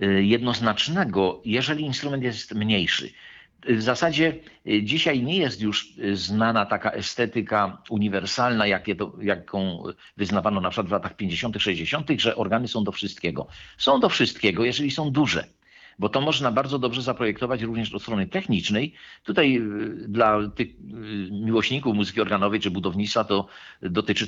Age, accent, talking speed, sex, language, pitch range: 50-69, native, 130 wpm, male, Polish, 105-130 Hz